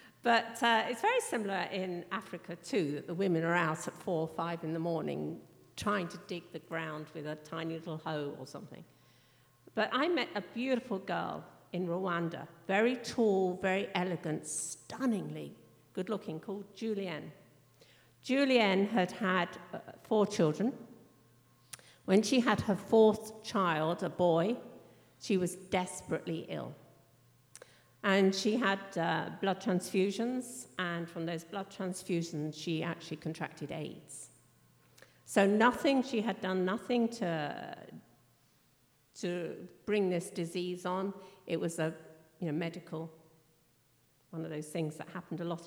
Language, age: English, 50-69